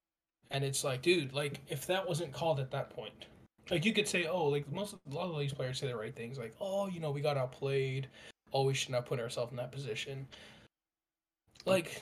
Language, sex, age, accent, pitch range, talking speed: English, male, 20-39, American, 130-160 Hz, 225 wpm